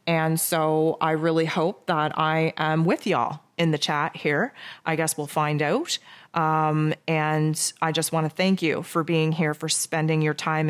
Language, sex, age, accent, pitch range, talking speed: English, female, 30-49, American, 155-180 Hz, 190 wpm